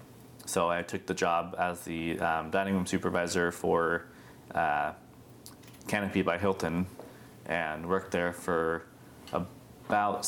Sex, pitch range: male, 85-95 Hz